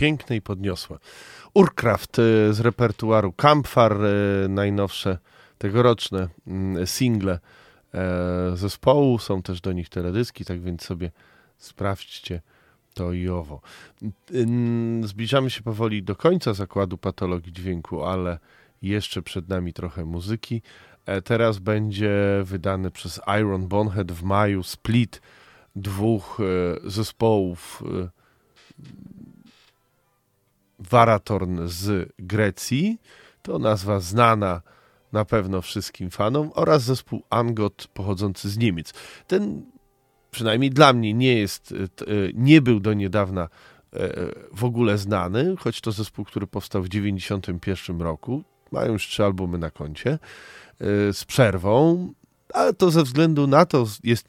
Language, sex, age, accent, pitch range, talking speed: Polish, male, 20-39, native, 95-115 Hz, 110 wpm